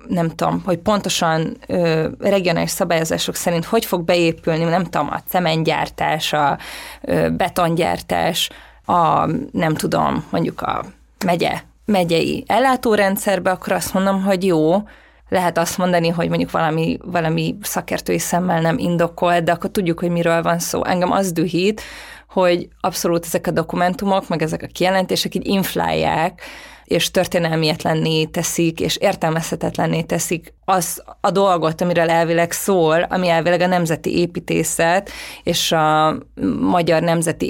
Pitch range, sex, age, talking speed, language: 165-195 Hz, female, 20-39, 135 wpm, Hungarian